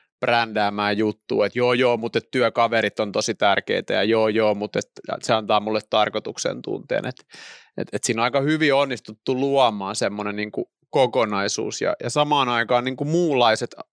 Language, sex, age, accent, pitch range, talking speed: Finnish, male, 30-49, native, 110-135 Hz, 140 wpm